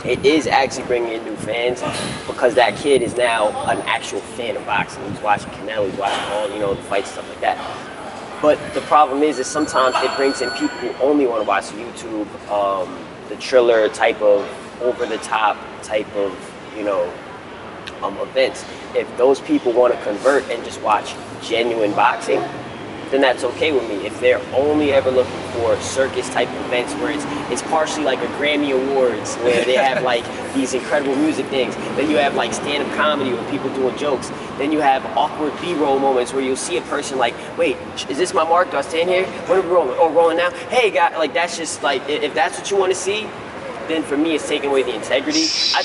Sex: male